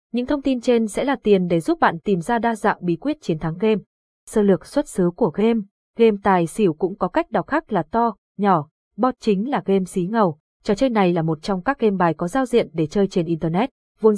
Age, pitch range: 20-39, 185-235 Hz